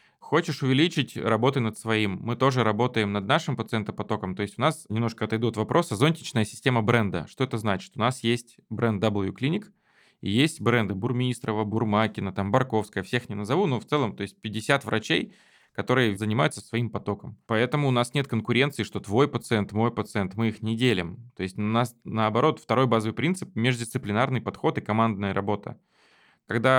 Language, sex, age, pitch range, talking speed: Russian, male, 20-39, 110-125 Hz, 175 wpm